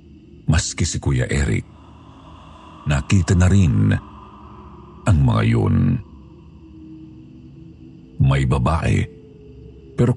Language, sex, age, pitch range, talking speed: Filipino, male, 50-69, 75-100 Hz, 75 wpm